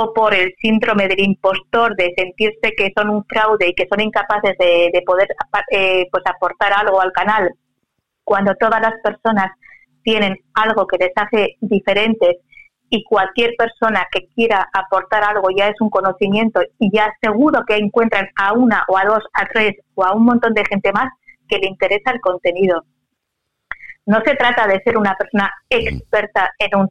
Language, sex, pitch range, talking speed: Spanish, female, 195-235 Hz, 175 wpm